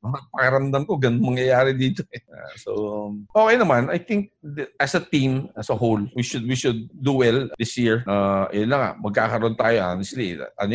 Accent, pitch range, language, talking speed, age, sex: native, 115-160 Hz, Filipino, 180 wpm, 50-69, male